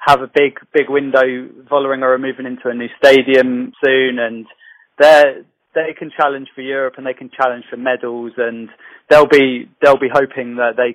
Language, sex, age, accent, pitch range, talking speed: English, male, 20-39, British, 125-145 Hz, 185 wpm